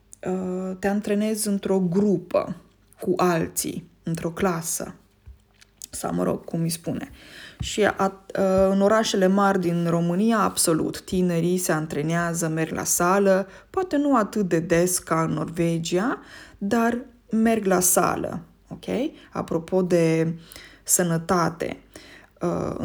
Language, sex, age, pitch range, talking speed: Romanian, female, 20-39, 170-220 Hz, 125 wpm